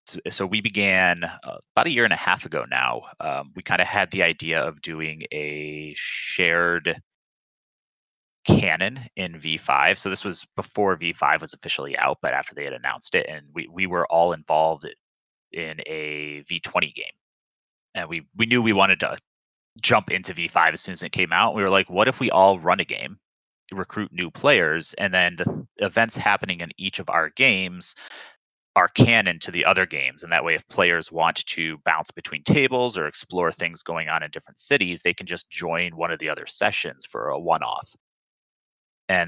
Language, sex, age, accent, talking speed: English, male, 30-49, American, 190 wpm